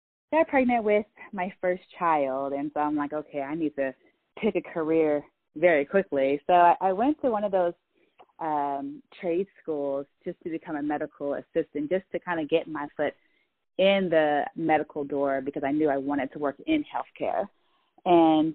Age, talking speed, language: 30-49, 180 wpm, English